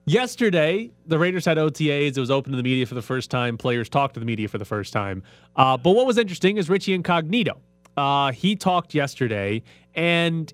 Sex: male